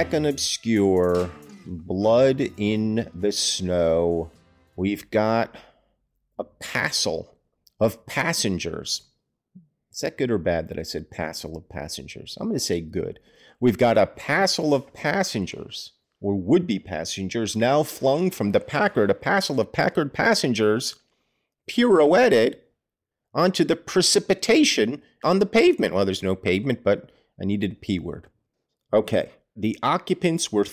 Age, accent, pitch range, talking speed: 50-69, American, 100-140 Hz, 135 wpm